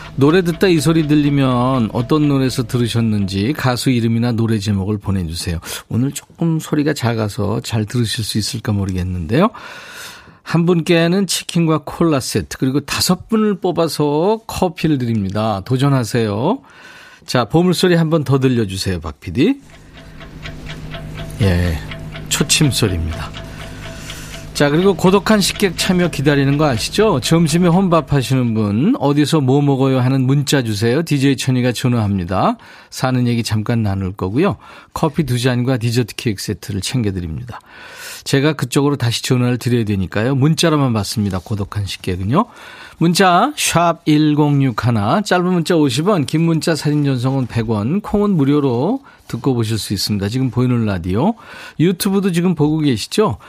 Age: 40-59